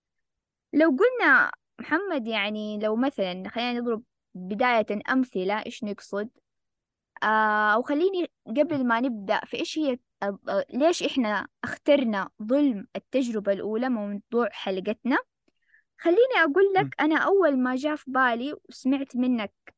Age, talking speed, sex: 20-39, 125 wpm, female